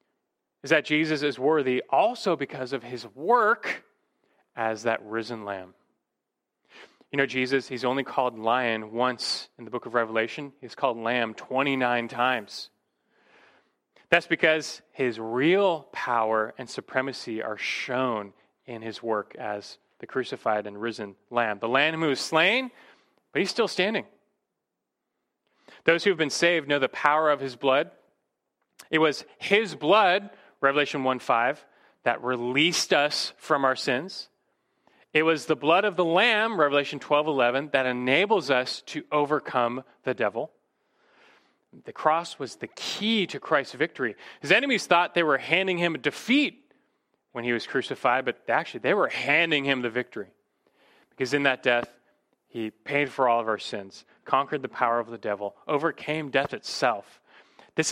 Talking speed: 155 wpm